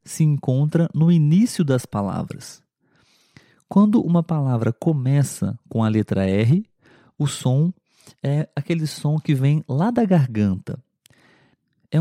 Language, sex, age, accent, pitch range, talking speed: Portuguese, male, 40-59, Brazilian, 120-155 Hz, 125 wpm